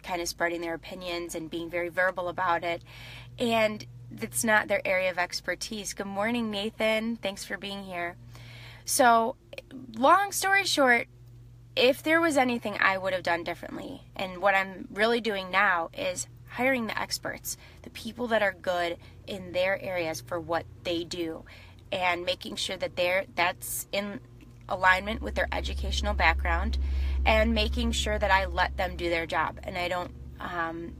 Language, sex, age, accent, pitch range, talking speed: English, female, 20-39, American, 150-210 Hz, 165 wpm